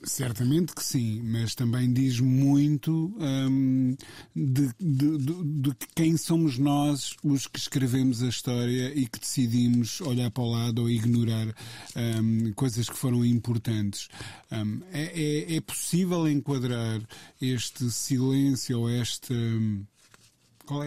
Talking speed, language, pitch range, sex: 130 wpm, Portuguese, 115-140 Hz, male